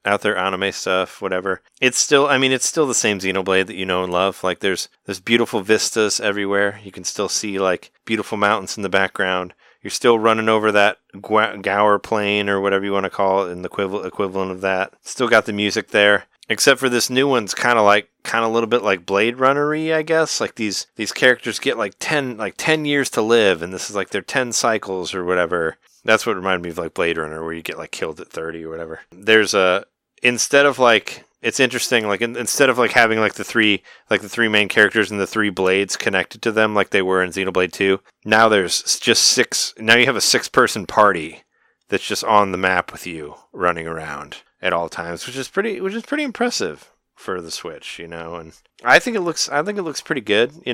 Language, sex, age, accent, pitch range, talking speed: English, male, 30-49, American, 90-115 Hz, 230 wpm